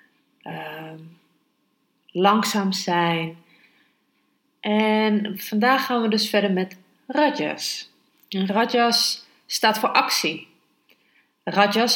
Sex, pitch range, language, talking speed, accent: female, 180-220 Hz, Dutch, 85 wpm, Dutch